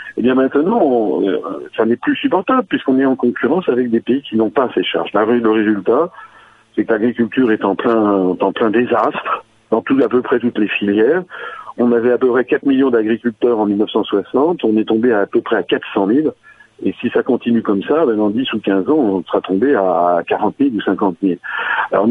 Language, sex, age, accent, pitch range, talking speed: French, male, 50-69, French, 110-150 Hz, 215 wpm